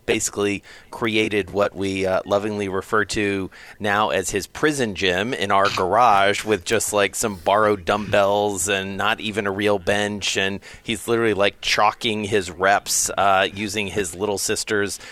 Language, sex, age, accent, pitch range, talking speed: English, male, 40-59, American, 95-115 Hz, 160 wpm